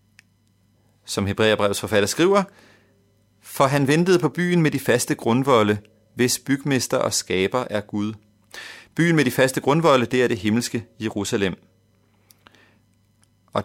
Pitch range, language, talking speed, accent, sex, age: 100-130 Hz, Danish, 130 wpm, native, male, 30-49